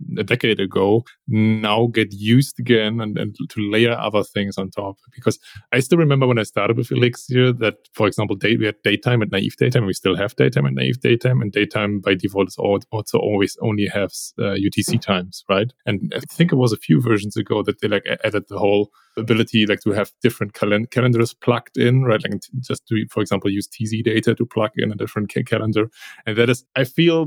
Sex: male